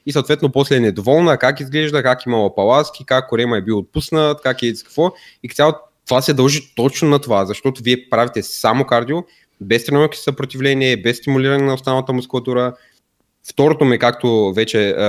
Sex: male